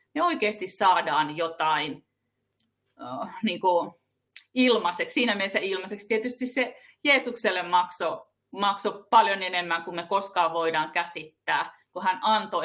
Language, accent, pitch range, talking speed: Finnish, native, 170-245 Hz, 115 wpm